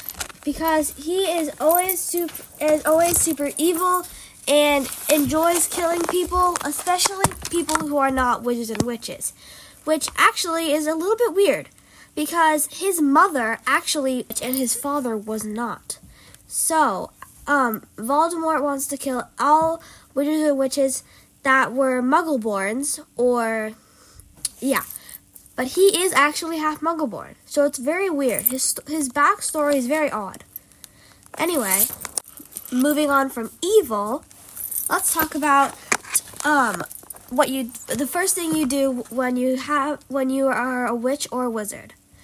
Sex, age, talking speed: female, 10-29, 135 wpm